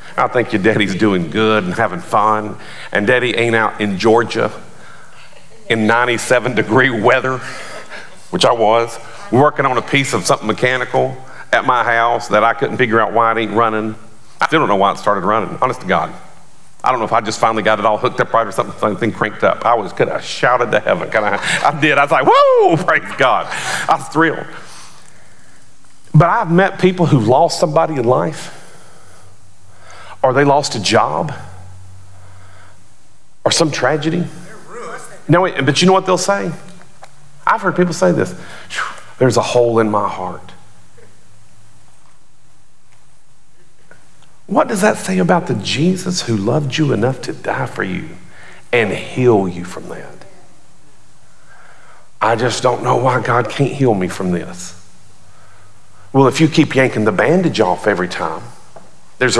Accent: American